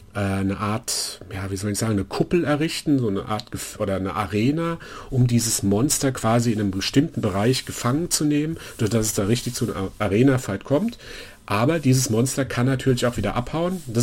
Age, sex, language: 40-59, male, German